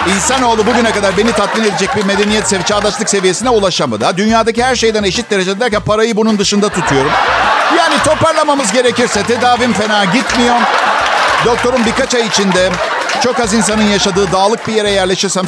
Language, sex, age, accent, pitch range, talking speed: Turkish, male, 50-69, native, 160-215 Hz, 155 wpm